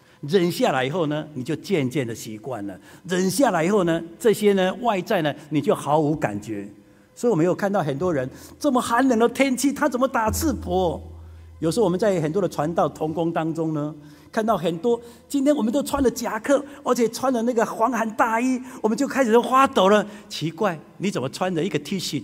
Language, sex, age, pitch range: Chinese, male, 50-69, 145-225 Hz